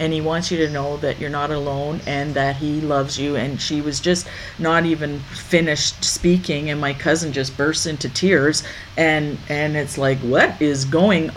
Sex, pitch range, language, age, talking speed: female, 150-185 Hz, English, 50-69, 195 wpm